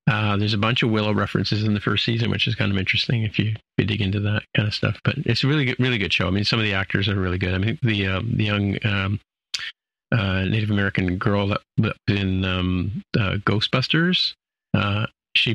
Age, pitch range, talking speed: 40-59, 100-120 Hz, 235 wpm